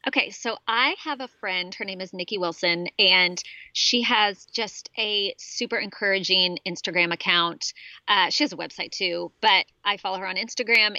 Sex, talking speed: female, 175 wpm